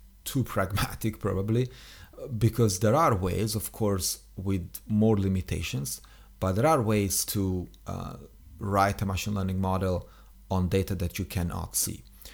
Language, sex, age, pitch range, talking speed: English, male, 40-59, 95-115 Hz, 140 wpm